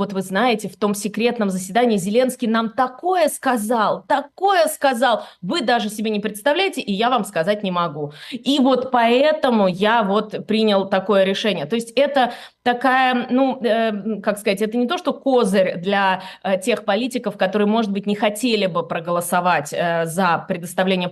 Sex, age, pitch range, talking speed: female, 20-39, 200-250 Hz, 170 wpm